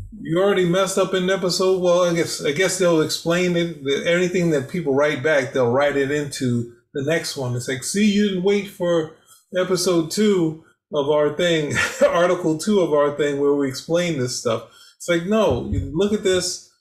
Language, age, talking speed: English, 20-39, 195 wpm